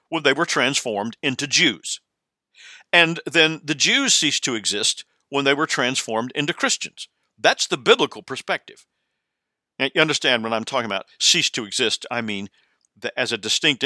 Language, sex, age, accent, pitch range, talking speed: English, male, 50-69, American, 120-155 Hz, 170 wpm